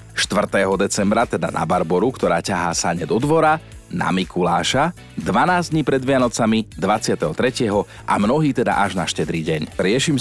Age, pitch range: 40-59, 95-130 Hz